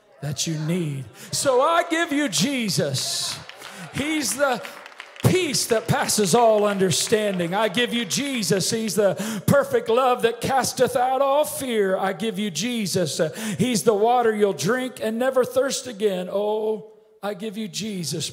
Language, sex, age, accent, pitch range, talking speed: English, male, 40-59, American, 175-255 Hz, 150 wpm